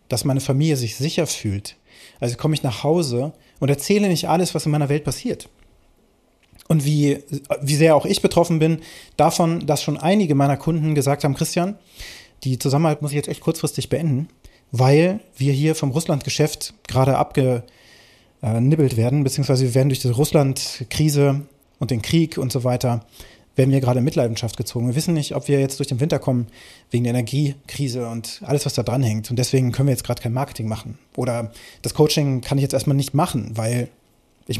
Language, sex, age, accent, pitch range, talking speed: German, male, 30-49, German, 125-155 Hz, 190 wpm